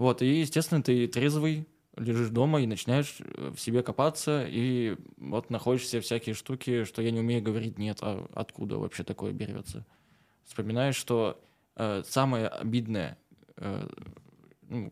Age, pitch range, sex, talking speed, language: 20-39, 110-130 Hz, male, 140 wpm, Russian